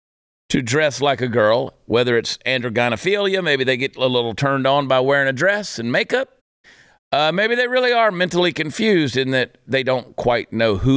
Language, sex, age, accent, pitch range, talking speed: English, male, 50-69, American, 115-170 Hz, 190 wpm